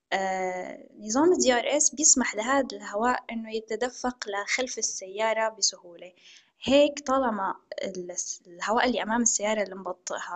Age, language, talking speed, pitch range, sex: 10-29, Arabic, 110 wpm, 195-250 Hz, female